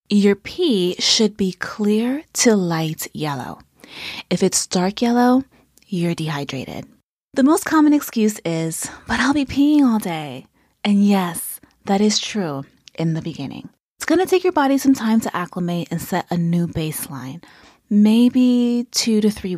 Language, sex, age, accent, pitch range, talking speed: English, female, 20-39, American, 170-240 Hz, 160 wpm